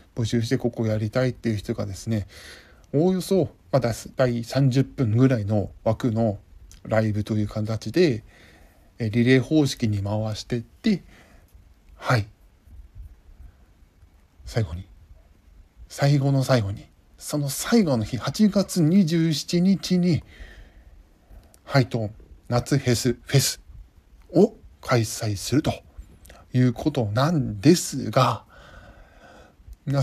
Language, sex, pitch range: Japanese, male, 85-140 Hz